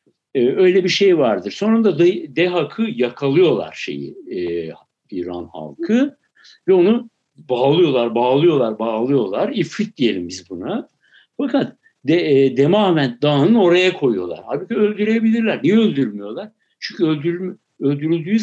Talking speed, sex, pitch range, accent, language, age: 115 wpm, male, 130-200 Hz, native, Turkish, 60-79